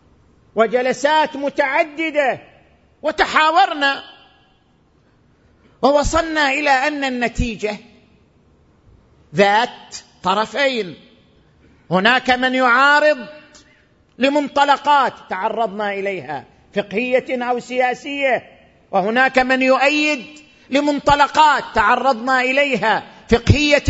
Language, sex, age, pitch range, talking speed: Arabic, male, 50-69, 210-290 Hz, 65 wpm